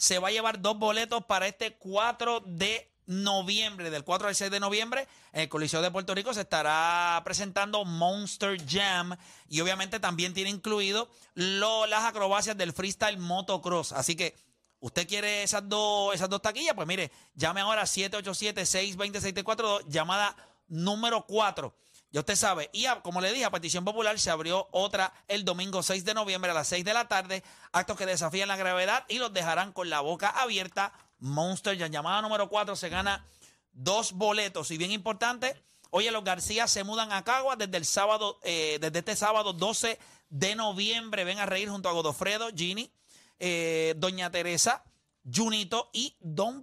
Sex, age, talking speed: male, 30-49, 175 wpm